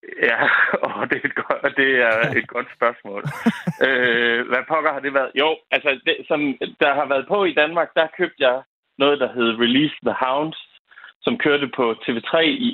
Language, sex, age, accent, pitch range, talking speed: Danish, male, 30-49, native, 120-165 Hz, 190 wpm